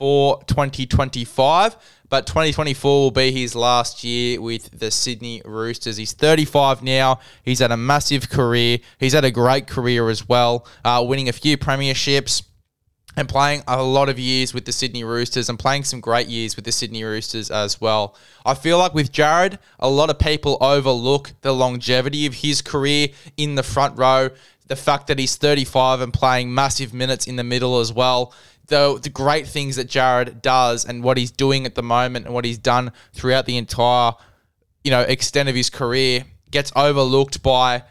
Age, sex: 20-39, male